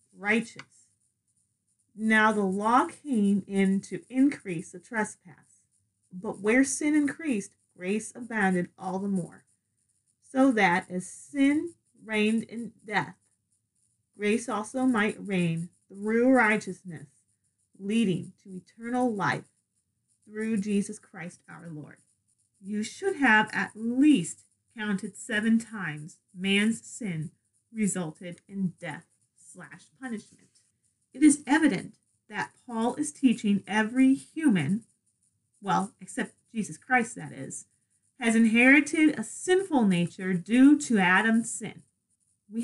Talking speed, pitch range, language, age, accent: 115 wpm, 180-245 Hz, English, 30-49, American